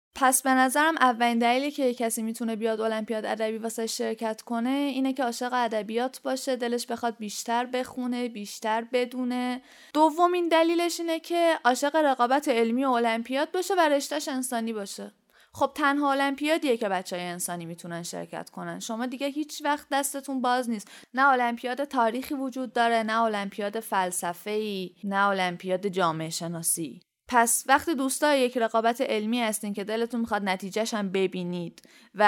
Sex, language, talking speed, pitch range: female, Persian, 150 wpm, 215-270 Hz